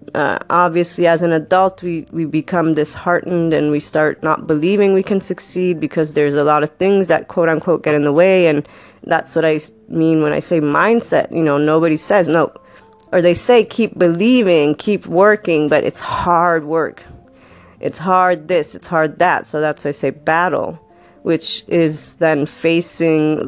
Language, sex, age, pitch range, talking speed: English, female, 30-49, 150-175 Hz, 180 wpm